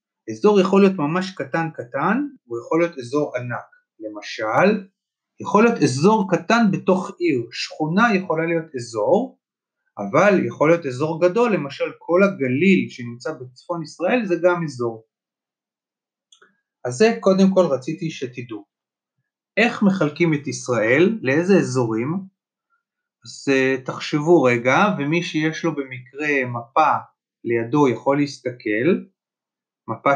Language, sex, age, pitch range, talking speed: Hebrew, male, 30-49, 130-195 Hz, 120 wpm